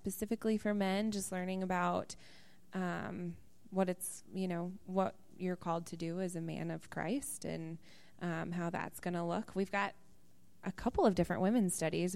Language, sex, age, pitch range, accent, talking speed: English, female, 20-39, 175-195 Hz, American, 180 wpm